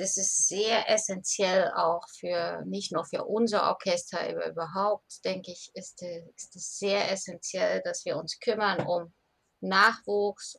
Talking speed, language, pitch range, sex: 140 wpm, German, 175-200 Hz, female